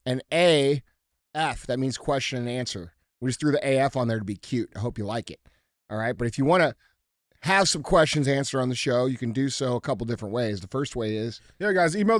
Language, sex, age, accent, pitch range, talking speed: English, male, 30-49, American, 120-150 Hz, 260 wpm